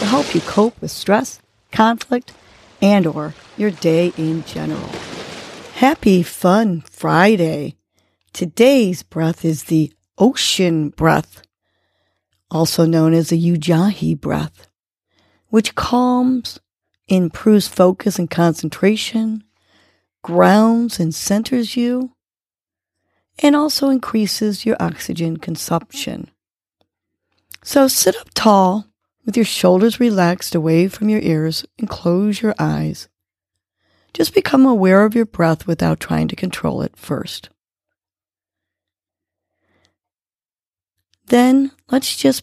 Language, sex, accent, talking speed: English, female, American, 105 wpm